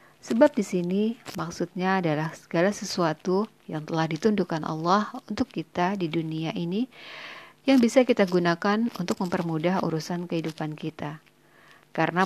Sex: female